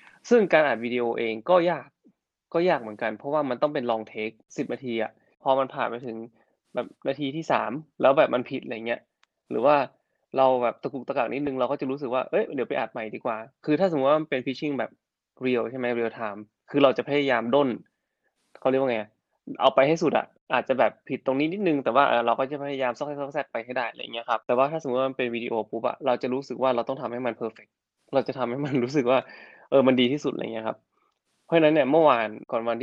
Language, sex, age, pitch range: Thai, male, 20-39, 115-140 Hz